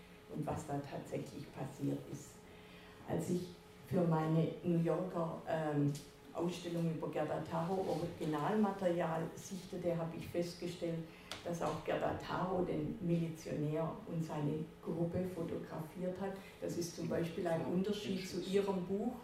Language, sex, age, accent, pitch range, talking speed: German, female, 50-69, German, 160-185 Hz, 130 wpm